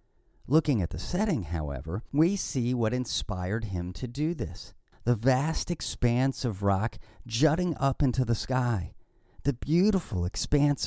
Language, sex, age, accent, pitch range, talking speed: English, male, 40-59, American, 95-140 Hz, 145 wpm